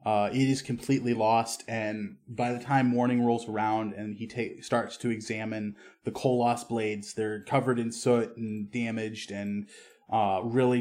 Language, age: English, 20-39